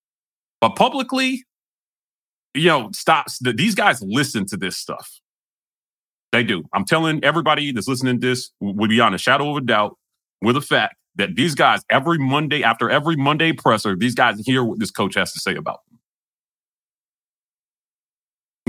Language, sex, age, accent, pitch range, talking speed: English, male, 30-49, American, 115-140 Hz, 170 wpm